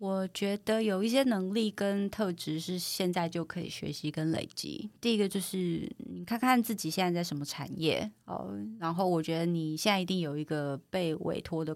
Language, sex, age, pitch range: Chinese, female, 20-39, 160-200 Hz